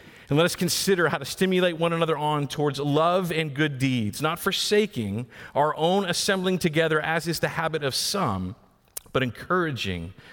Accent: American